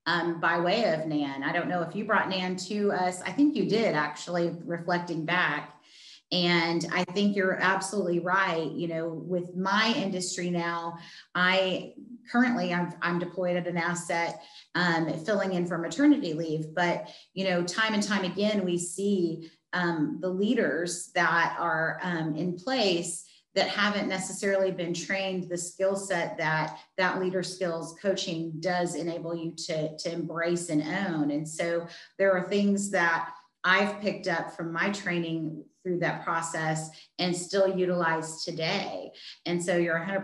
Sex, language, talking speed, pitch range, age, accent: female, English, 160 wpm, 165-190 Hz, 30-49, American